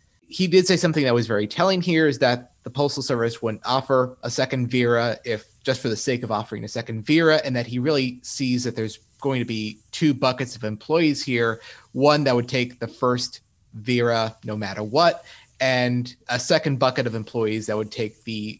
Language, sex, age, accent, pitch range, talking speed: English, male, 30-49, American, 110-130 Hz, 205 wpm